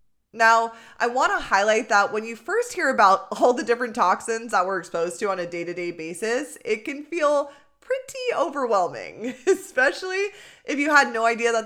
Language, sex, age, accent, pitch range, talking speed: English, female, 20-39, American, 185-250 Hz, 180 wpm